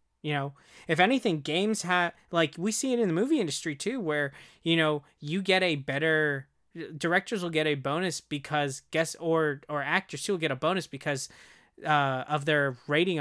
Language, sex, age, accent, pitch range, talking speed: English, male, 20-39, American, 140-175 Hz, 185 wpm